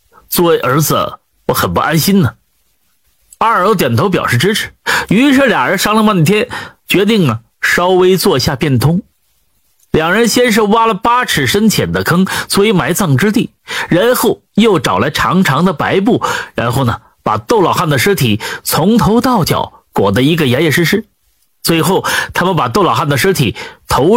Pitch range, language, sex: 165-220 Hz, Chinese, male